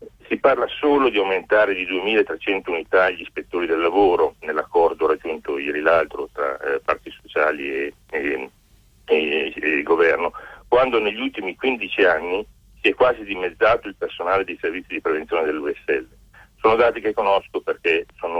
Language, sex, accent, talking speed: Italian, male, native, 145 wpm